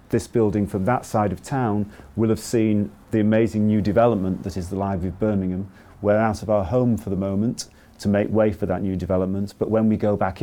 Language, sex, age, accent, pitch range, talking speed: English, male, 40-59, British, 100-115 Hz, 230 wpm